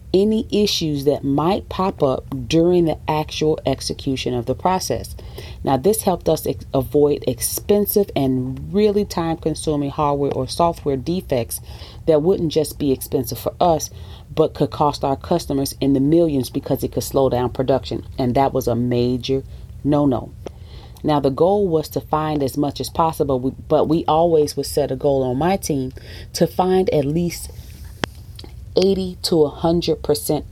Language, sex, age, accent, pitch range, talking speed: English, female, 30-49, American, 130-165 Hz, 160 wpm